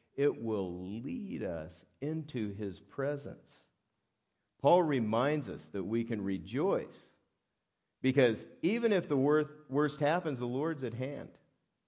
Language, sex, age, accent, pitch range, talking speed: English, male, 50-69, American, 95-120 Hz, 120 wpm